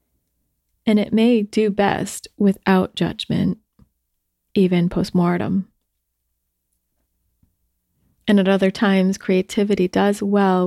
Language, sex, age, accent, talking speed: English, female, 30-49, American, 90 wpm